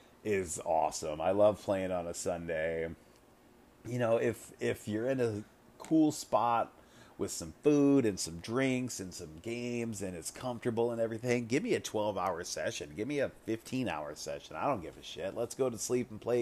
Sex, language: male, English